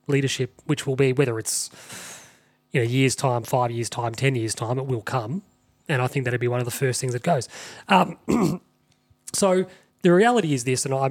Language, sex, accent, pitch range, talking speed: English, male, Australian, 125-150 Hz, 210 wpm